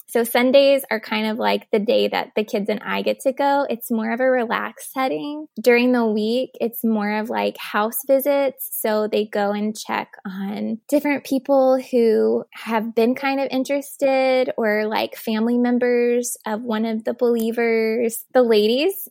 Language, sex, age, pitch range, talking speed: English, female, 20-39, 215-255 Hz, 175 wpm